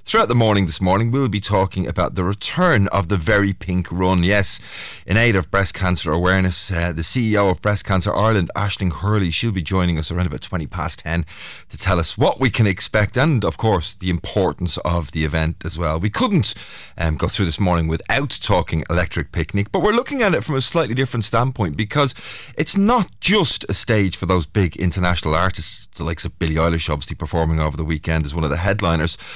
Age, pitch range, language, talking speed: 30-49, 85-110 Hz, English, 215 wpm